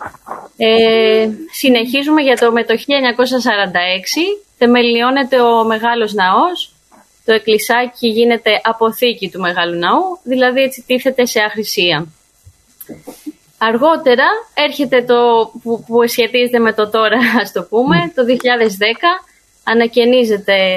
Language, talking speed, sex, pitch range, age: Greek, 105 wpm, female, 210-250 Hz, 20-39